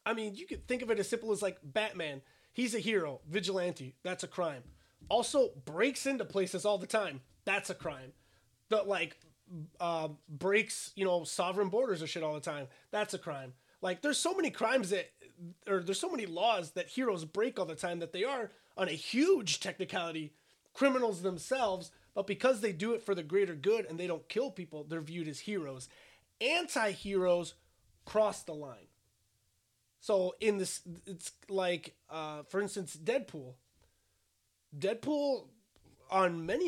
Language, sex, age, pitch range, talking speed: English, male, 30-49, 155-205 Hz, 170 wpm